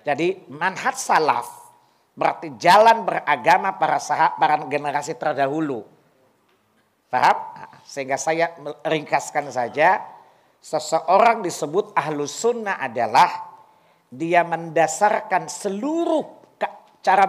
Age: 50-69